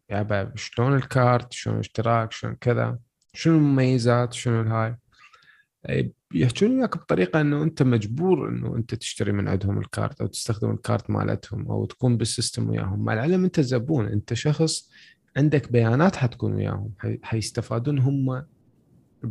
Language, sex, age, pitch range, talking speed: Arabic, male, 20-39, 110-135 Hz, 135 wpm